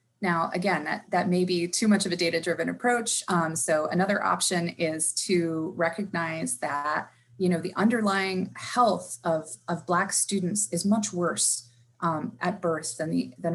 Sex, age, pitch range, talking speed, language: female, 20-39, 165-200 Hz, 170 wpm, English